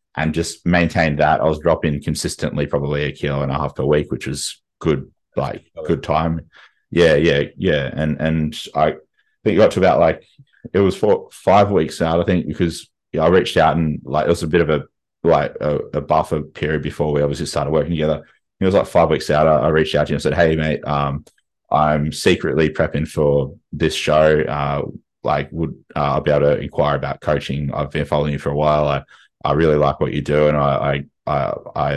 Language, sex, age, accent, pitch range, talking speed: English, male, 20-39, Australian, 70-80 Hz, 220 wpm